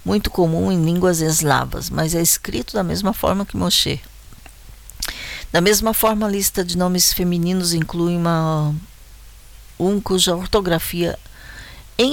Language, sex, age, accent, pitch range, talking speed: Portuguese, female, 50-69, Brazilian, 150-195 Hz, 130 wpm